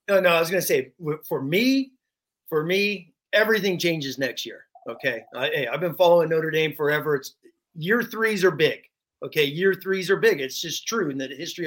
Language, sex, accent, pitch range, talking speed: English, male, American, 170-230 Hz, 195 wpm